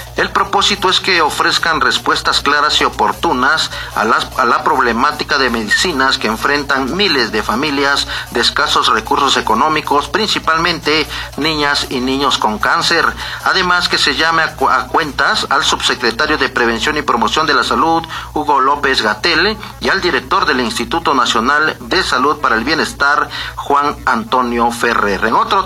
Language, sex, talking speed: Spanish, male, 150 wpm